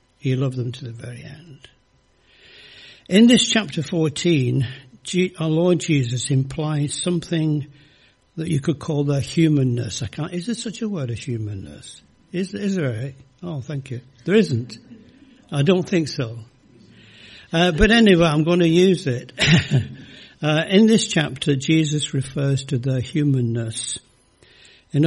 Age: 60-79